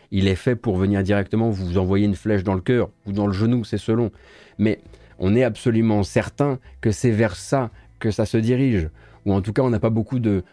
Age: 30-49